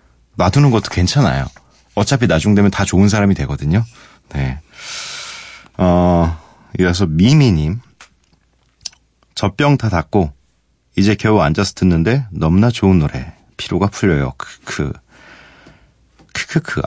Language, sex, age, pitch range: Korean, male, 40-59, 75-110 Hz